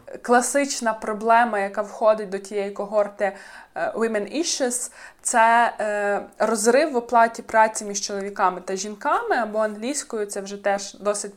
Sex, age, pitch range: female, 20-39, 200-235 Hz